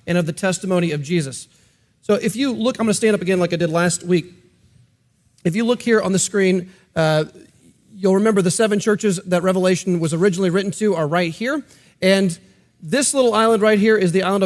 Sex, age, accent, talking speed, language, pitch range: male, 40-59, American, 215 wpm, English, 180-225 Hz